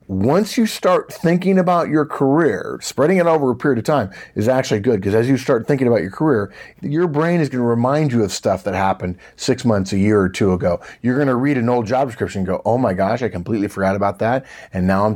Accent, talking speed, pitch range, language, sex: American, 255 wpm, 95-130 Hz, English, male